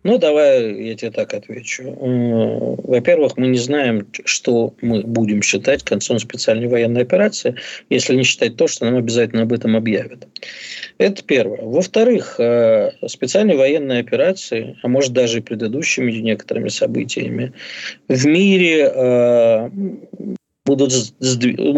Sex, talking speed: male, 125 wpm